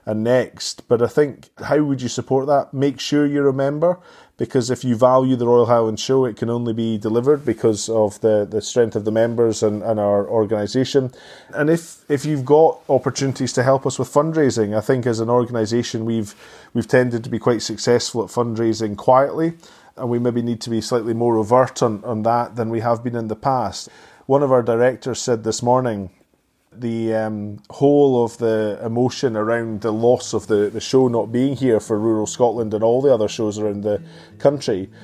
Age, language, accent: 30-49, English, British